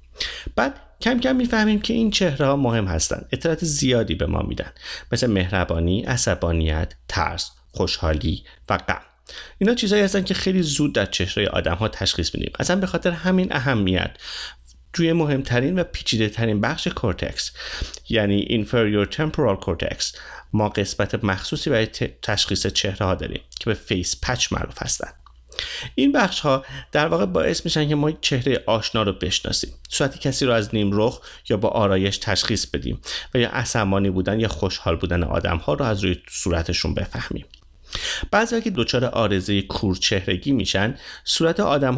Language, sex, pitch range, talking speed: English, male, 95-150 Hz, 155 wpm